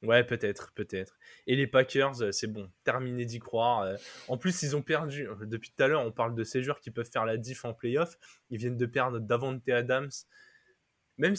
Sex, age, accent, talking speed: male, 20-39, French, 205 wpm